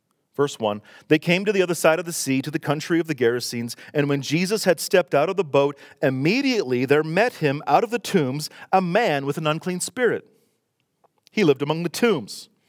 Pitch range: 130-175 Hz